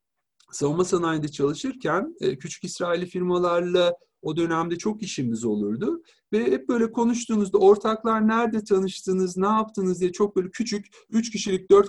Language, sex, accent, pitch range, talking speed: Turkish, male, native, 165-210 Hz, 135 wpm